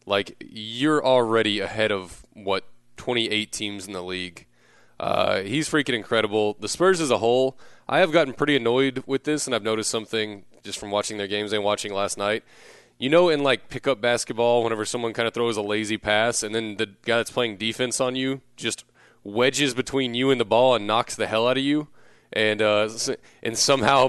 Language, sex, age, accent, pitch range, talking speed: English, male, 20-39, American, 110-130 Hz, 200 wpm